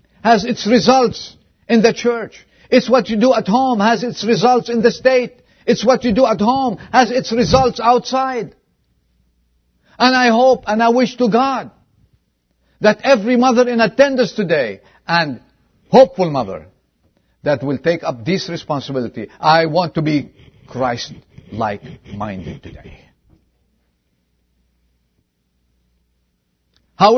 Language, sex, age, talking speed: English, male, 50-69, 130 wpm